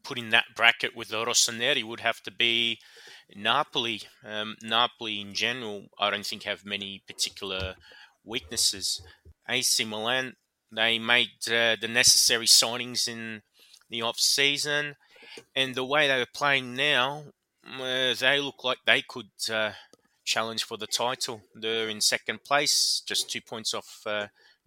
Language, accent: English, Australian